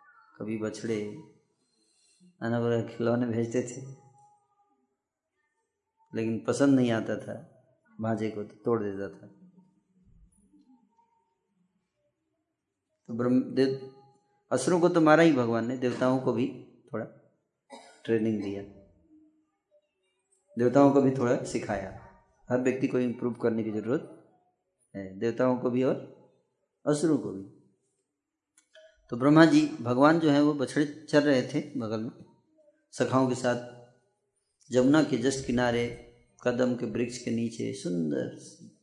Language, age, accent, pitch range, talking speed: Hindi, 20-39, native, 115-180 Hz, 120 wpm